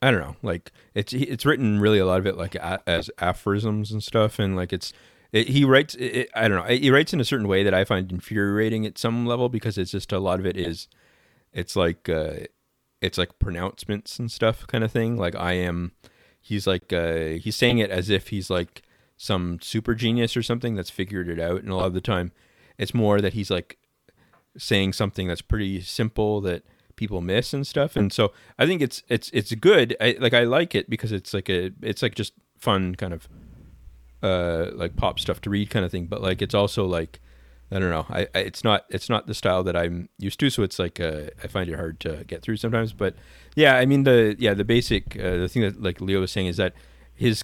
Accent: American